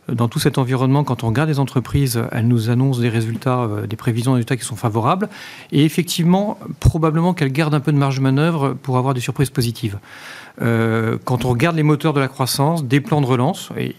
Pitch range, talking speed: 120-150 Hz, 215 wpm